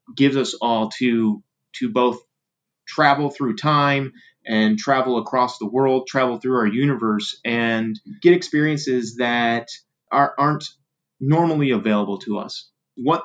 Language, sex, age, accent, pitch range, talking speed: English, male, 30-49, American, 110-135 Hz, 130 wpm